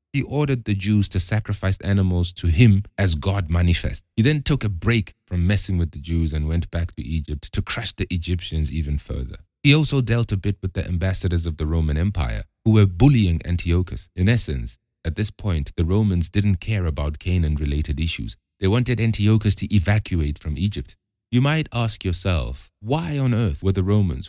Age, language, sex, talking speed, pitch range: 30-49, English, male, 195 wpm, 80-110 Hz